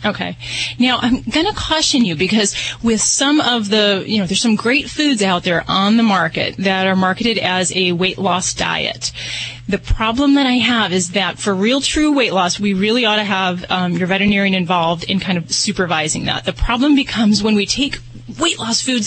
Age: 30-49